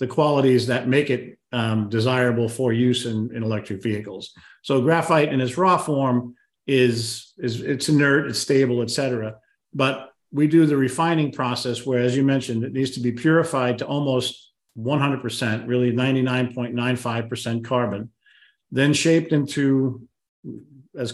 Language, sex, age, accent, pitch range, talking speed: English, male, 50-69, American, 120-135 Hz, 150 wpm